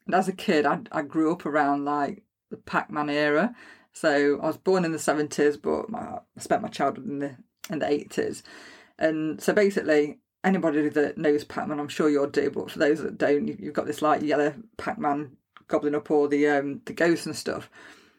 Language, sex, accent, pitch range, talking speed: English, female, British, 150-185 Hz, 200 wpm